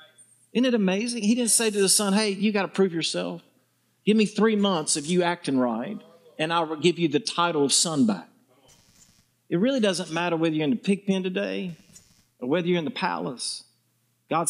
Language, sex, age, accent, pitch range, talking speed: English, male, 50-69, American, 145-205 Hz, 210 wpm